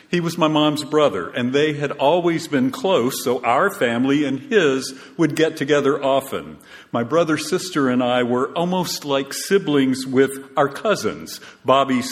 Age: 50-69